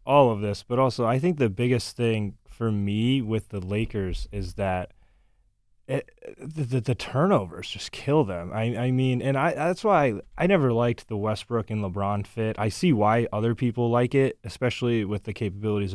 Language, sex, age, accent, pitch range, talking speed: English, male, 20-39, American, 95-120 Hz, 195 wpm